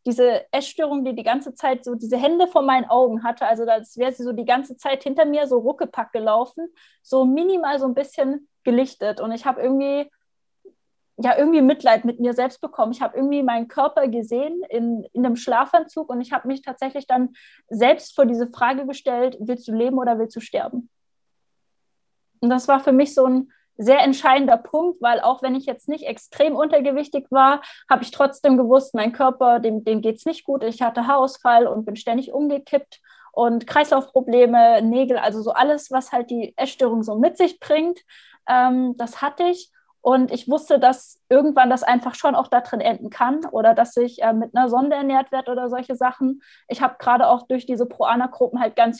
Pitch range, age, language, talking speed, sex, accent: 245-280 Hz, 20-39, German, 195 wpm, female, German